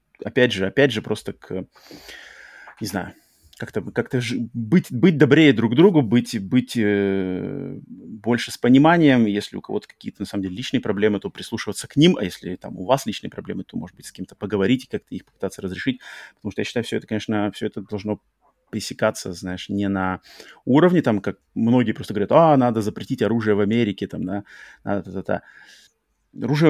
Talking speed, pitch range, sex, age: 195 wpm, 100-120 Hz, male, 30-49